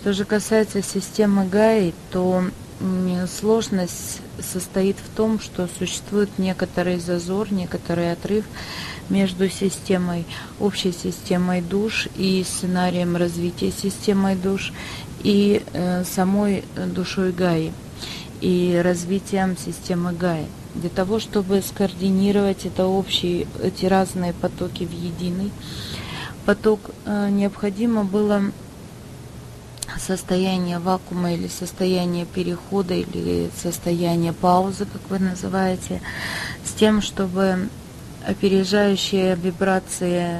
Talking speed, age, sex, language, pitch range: 95 wpm, 30-49, female, English, 180-195 Hz